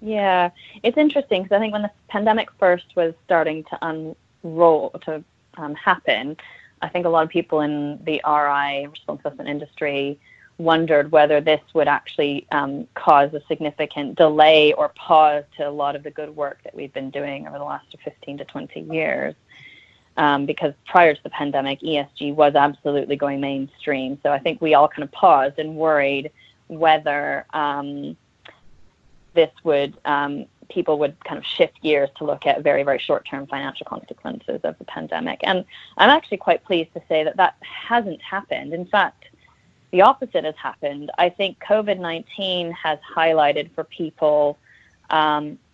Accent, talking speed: American, 170 wpm